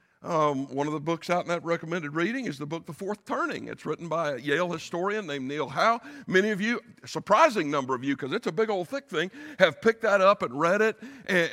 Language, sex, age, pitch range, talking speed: English, male, 60-79, 170-225 Hz, 250 wpm